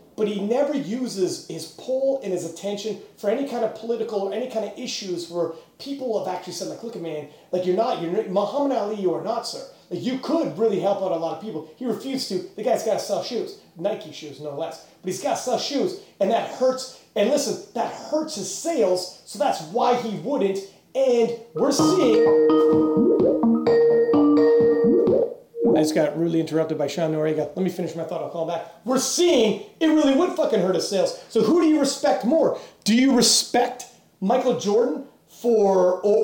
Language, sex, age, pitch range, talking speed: English, male, 30-49, 175-245 Hz, 200 wpm